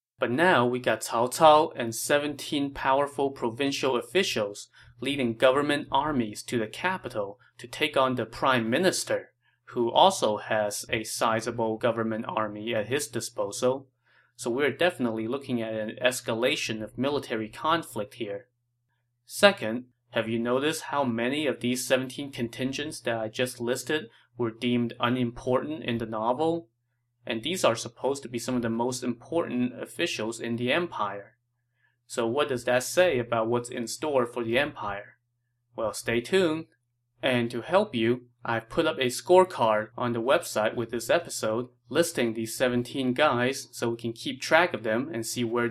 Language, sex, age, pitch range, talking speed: English, male, 30-49, 115-140 Hz, 165 wpm